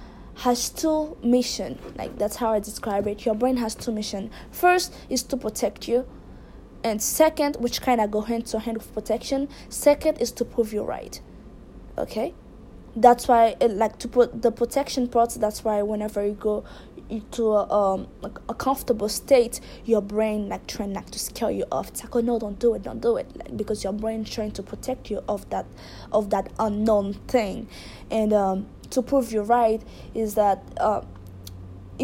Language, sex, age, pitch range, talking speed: English, female, 20-39, 210-250 Hz, 185 wpm